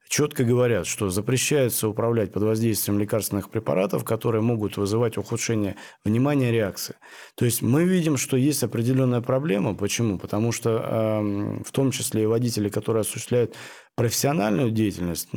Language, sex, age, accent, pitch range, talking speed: Russian, male, 20-39, native, 105-125 Hz, 135 wpm